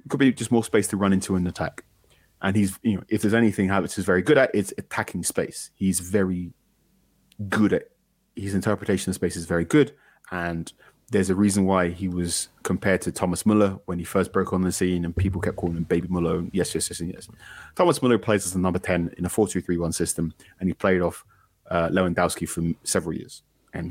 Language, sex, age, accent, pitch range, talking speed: English, male, 30-49, British, 85-100 Hz, 220 wpm